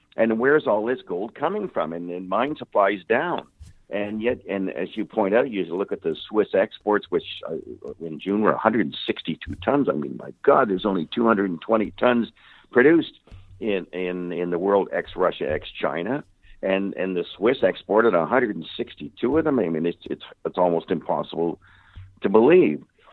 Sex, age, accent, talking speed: male, 60-79, American, 170 wpm